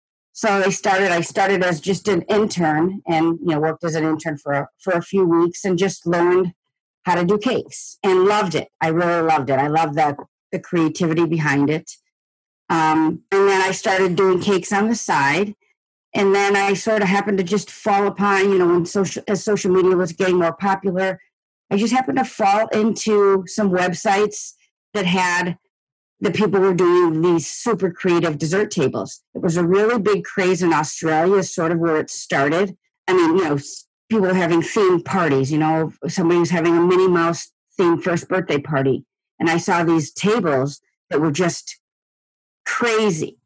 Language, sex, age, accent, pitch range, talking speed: English, female, 40-59, American, 165-200 Hz, 190 wpm